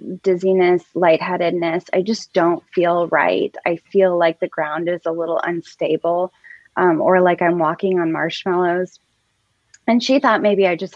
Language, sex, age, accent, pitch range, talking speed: English, female, 10-29, American, 175-220 Hz, 160 wpm